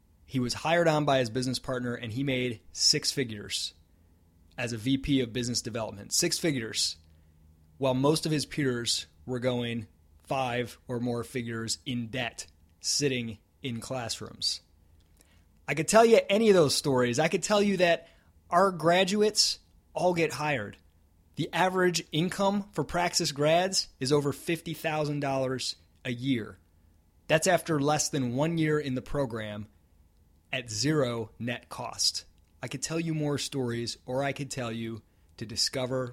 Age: 30-49